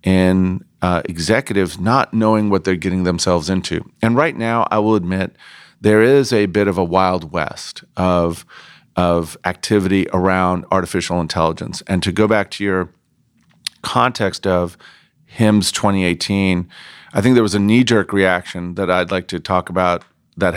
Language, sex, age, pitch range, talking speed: English, male, 40-59, 90-105 Hz, 160 wpm